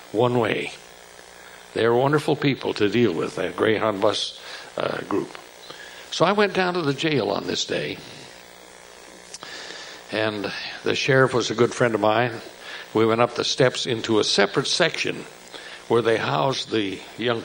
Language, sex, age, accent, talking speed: English, male, 60-79, American, 160 wpm